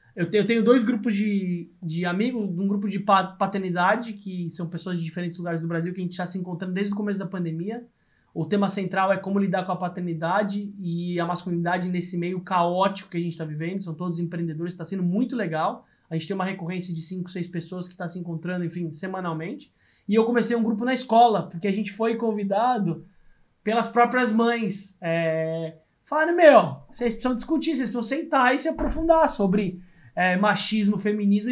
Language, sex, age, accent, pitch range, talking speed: Portuguese, male, 20-39, Brazilian, 180-230 Hz, 195 wpm